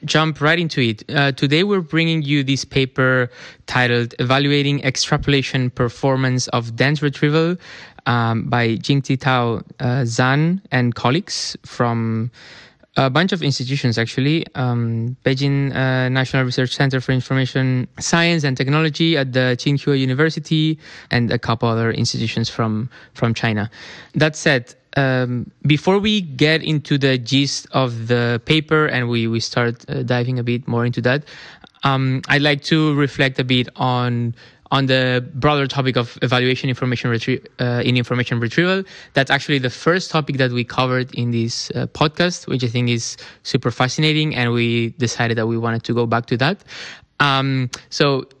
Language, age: English, 20-39